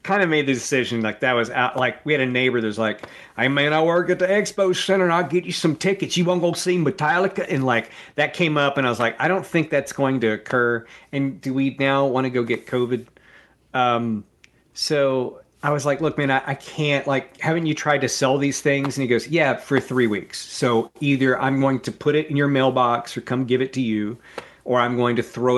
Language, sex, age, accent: English, male, 40-59, American